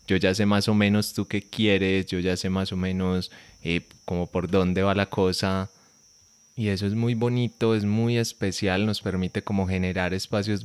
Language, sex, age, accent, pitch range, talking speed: Spanish, male, 20-39, Colombian, 90-105 Hz, 195 wpm